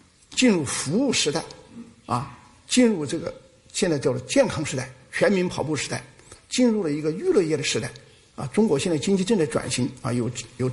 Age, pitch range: 50-69, 125-165 Hz